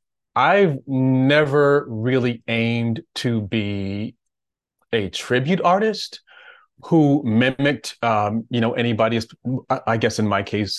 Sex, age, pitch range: male, 30-49, 100-120 Hz